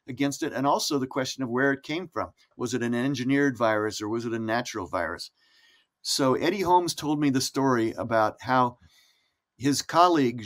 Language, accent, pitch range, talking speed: Italian, American, 120-145 Hz, 190 wpm